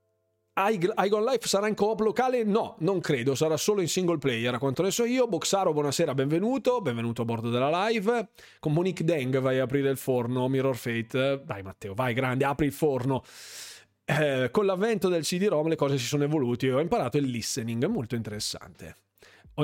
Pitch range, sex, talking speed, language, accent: 135-205 Hz, male, 185 wpm, Italian, native